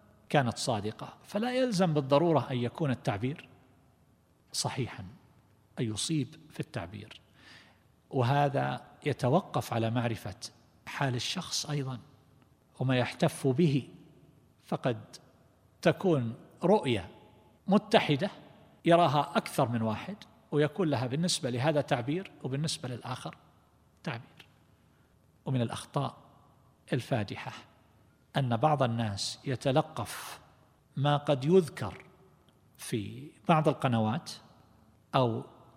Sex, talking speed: male, 90 wpm